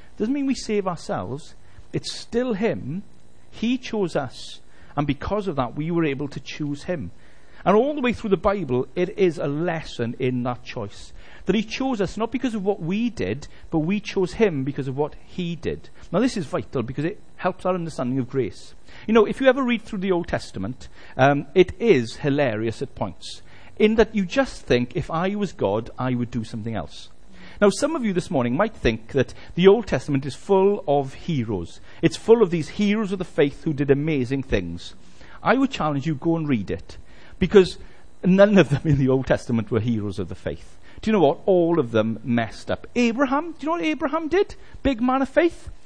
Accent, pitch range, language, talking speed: British, 130-210 Hz, English, 215 wpm